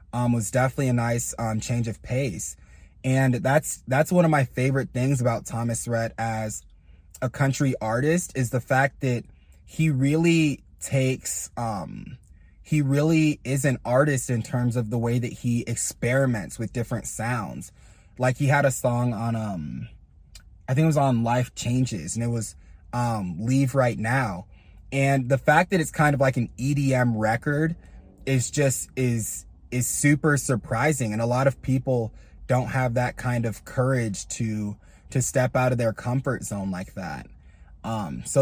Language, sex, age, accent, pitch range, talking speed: English, male, 20-39, American, 110-135 Hz, 170 wpm